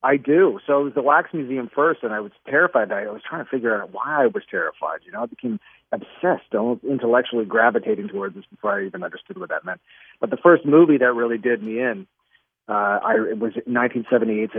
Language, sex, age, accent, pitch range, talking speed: English, male, 40-59, American, 115-140 Hz, 215 wpm